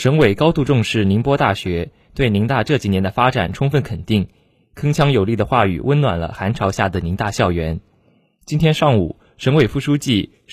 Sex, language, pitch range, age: male, Chinese, 100-135 Hz, 20-39